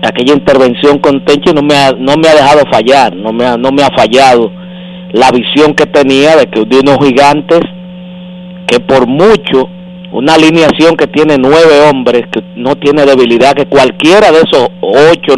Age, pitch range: 50-69, 145-180 Hz